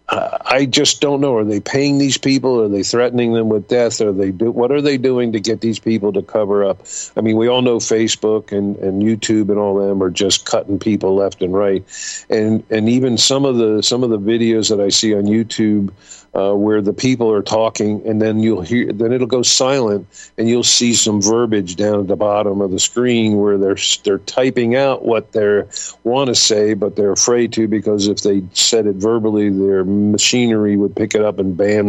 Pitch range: 100-125 Hz